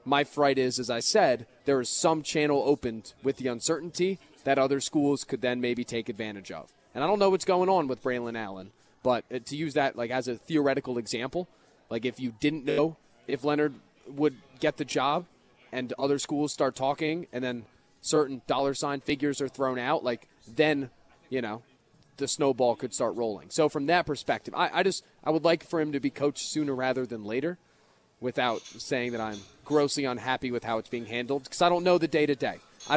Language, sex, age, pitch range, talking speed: English, male, 30-49, 125-155 Hz, 210 wpm